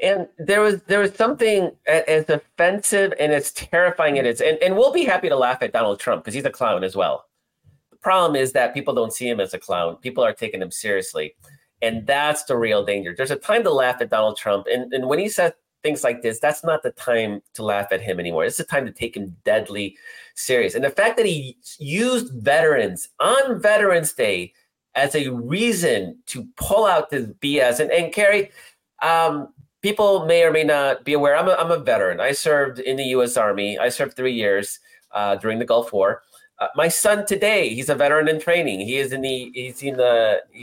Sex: male